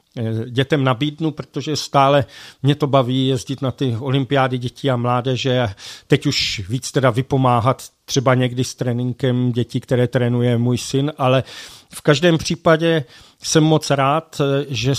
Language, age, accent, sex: Czech, 50-69, native, male